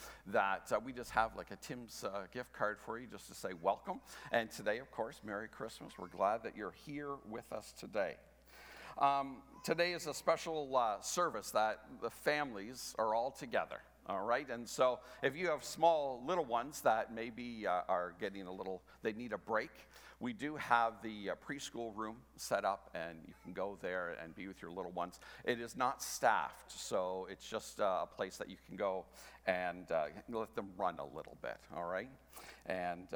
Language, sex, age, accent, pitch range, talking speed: English, male, 50-69, American, 105-150 Hz, 200 wpm